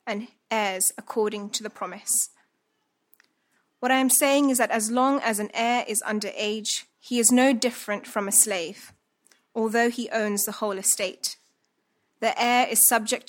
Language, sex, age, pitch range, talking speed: English, female, 20-39, 210-240 Hz, 165 wpm